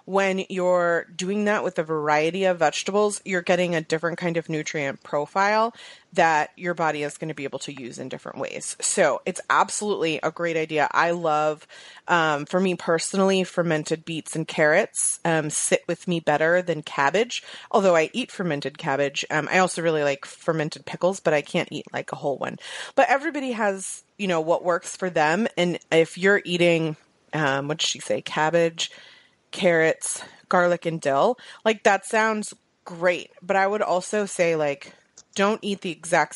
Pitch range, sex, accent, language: 155-185 Hz, female, American, English